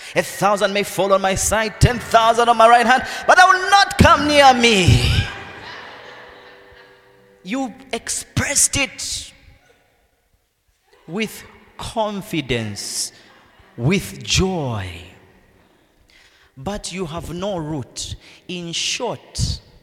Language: English